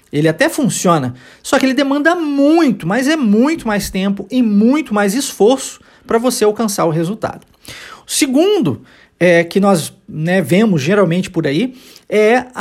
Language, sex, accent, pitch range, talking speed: Portuguese, male, Brazilian, 170-250 Hz, 150 wpm